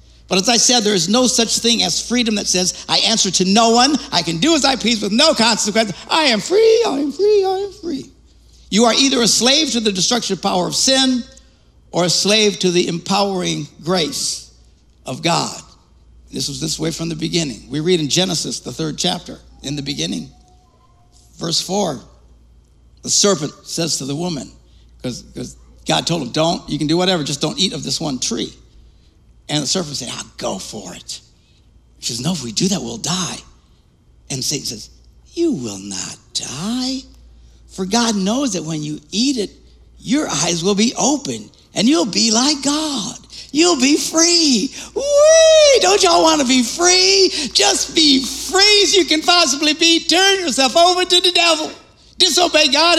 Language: English